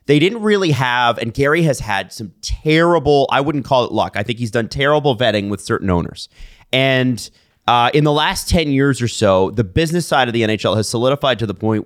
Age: 30-49